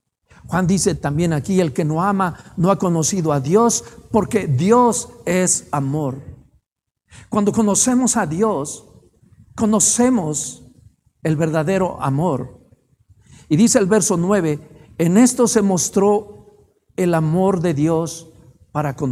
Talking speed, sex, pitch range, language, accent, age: 125 wpm, male, 145-210 Hz, Spanish, Mexican, 50-69